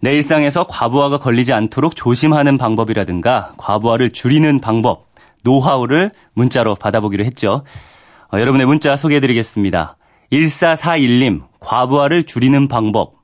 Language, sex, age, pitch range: Korean, male, 40-59, 110-150 Hz